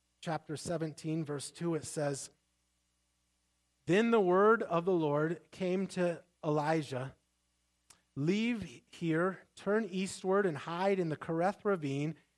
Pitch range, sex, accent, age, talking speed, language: 145-200 Hz, male, American, 30-49, 120 wpm, English